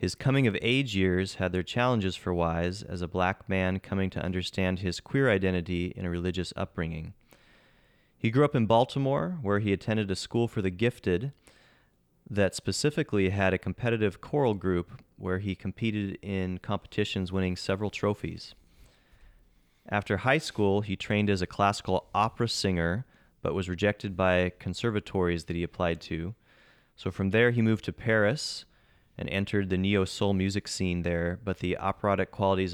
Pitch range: 95-110 Hz